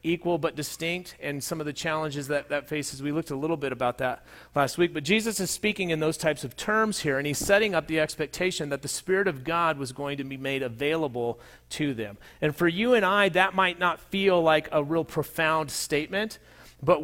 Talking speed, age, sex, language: 225 wpm, 40-59, male, English